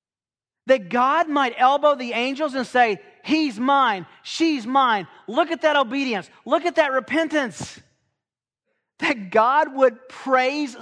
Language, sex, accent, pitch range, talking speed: English, male, American, 160-225 Hz, 135 wpm